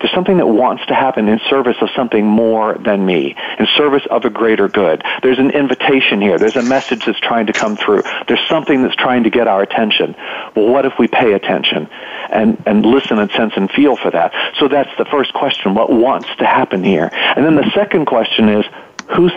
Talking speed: 220 wpm